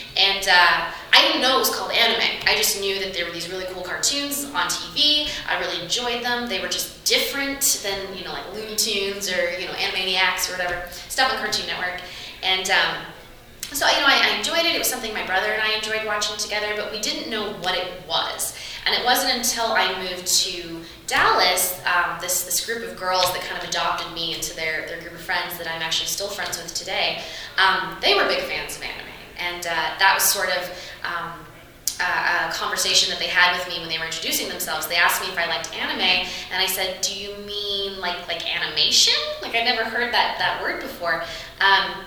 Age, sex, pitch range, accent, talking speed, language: 20-39, female, 175-215 Hz, American, 220 wpm, English